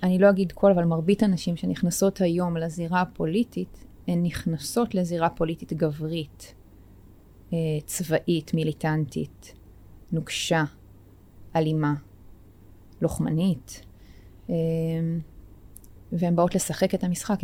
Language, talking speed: Hebrew, 90 wpm